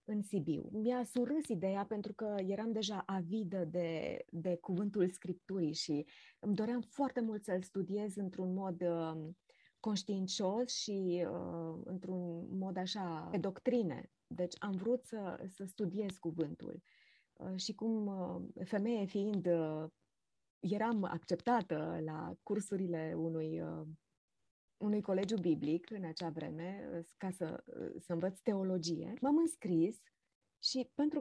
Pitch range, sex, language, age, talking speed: 175-230 Hz, female, Romanian, 20-39, 130 wpm